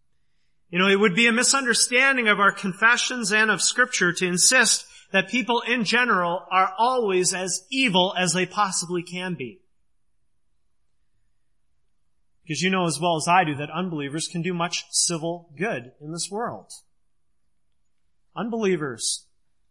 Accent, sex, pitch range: American, male, 145-210 Hz